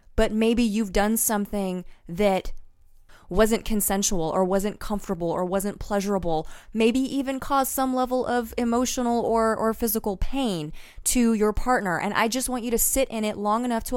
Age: 20-39